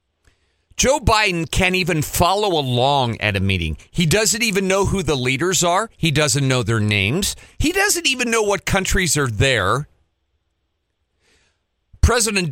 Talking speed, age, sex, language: 150 wpm, 40-59, male, English